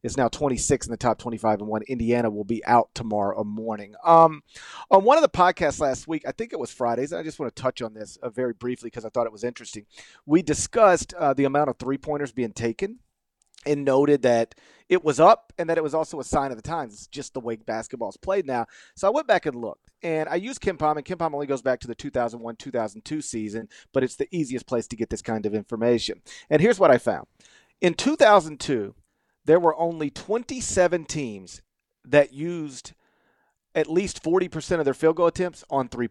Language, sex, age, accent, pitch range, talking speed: English, male, 40-59, American, 120-170 Hz, 225 wpm